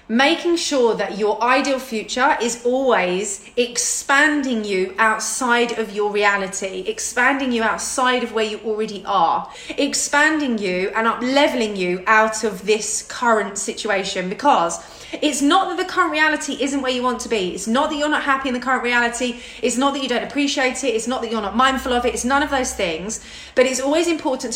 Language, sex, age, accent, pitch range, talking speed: English, female, 30-49, British, 215-270 Hz, 195 wpm